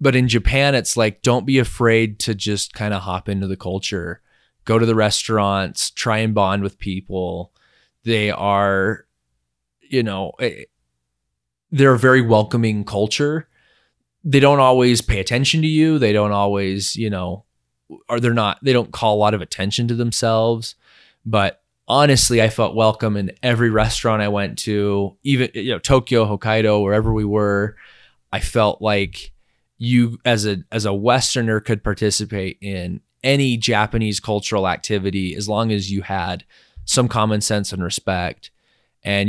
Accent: American